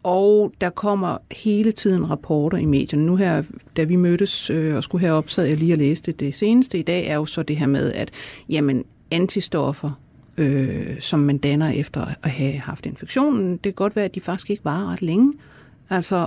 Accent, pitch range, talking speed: native, 150-210 Hz, 210 wpm